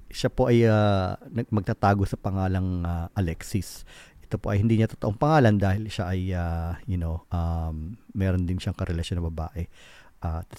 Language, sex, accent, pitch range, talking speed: Filipino, male, native, 85-110 Hz, 180 wpm